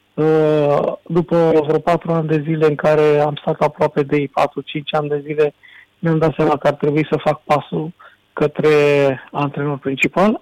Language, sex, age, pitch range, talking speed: Romanian, male, 40-59, 140-160 Hz, 165 wpm